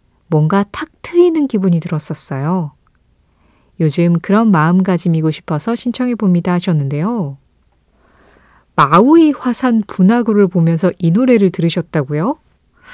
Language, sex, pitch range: Korean, female, 170-245 Hz